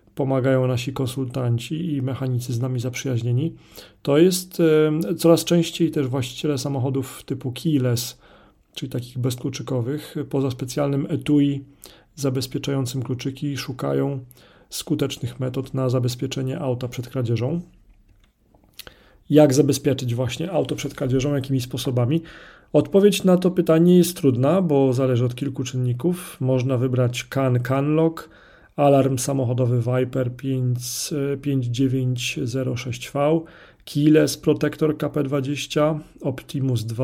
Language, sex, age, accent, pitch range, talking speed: Polish, male, 40-59, native, 125-150 Hz, 105 wpm